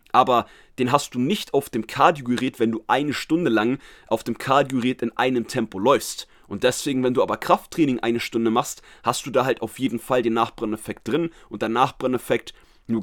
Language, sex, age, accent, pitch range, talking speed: German, male, 30-49, German, 115-140 Hz, 200 wpm